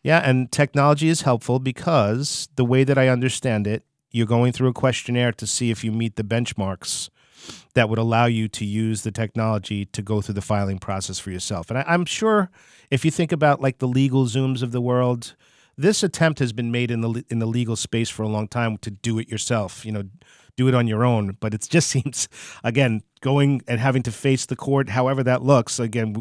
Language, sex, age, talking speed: English, male, 40-59, 220 wpm